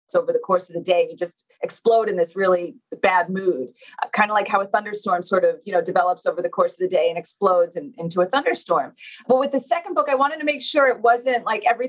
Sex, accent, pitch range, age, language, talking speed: female, American, 185-250 Hz, 30-49, English, 255 wpm